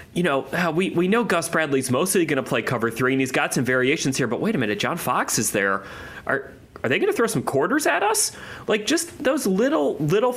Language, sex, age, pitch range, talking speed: English, male, 30-49, 120-150 Hz, 245 wpm